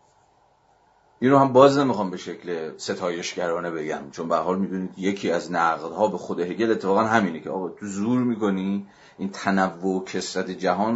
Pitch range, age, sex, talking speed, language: 90-100 Hz, 40-59, male, 165 wpm, Persian